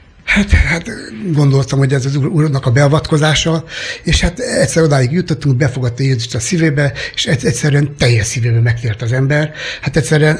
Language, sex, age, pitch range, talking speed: Hungarian, male, 60-79, 135-165 Hz, 155 wpm